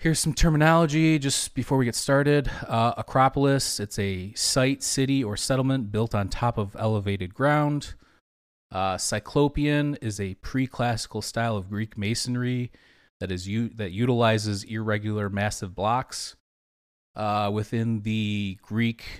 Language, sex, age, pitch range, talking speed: English, male, 30-49, 100-125 Hz, 135 wpm